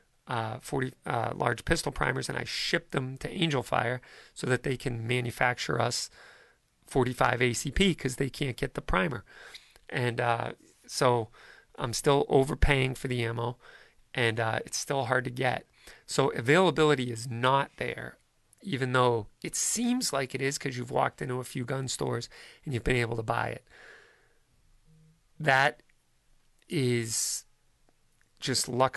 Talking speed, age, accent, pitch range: 165 wpm, 40-59, American, 120-140 Hz